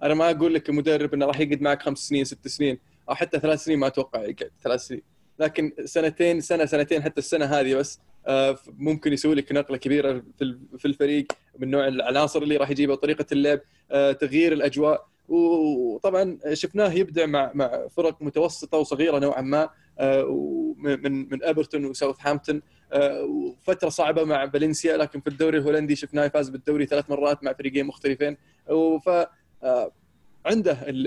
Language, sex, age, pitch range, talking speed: Arabic, male, 20-39, 140-155 Hz, 160 wpm